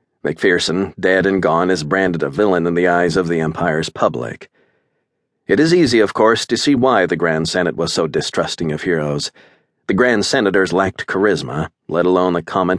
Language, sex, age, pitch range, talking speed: English, male, 40-59, 90-100 Hz, 190 wpm